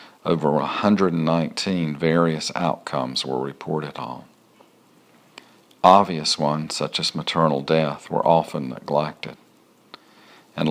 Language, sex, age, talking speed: English, male, 50-69, 95 wpm